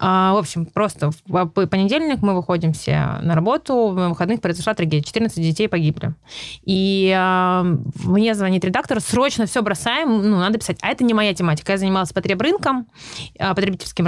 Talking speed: 160 wpm